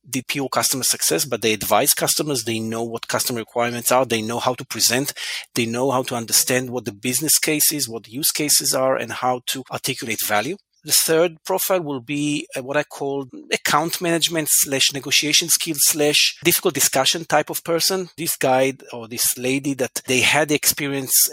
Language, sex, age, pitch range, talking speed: English, male, 40-59, 120-150 Hz, 185 wpm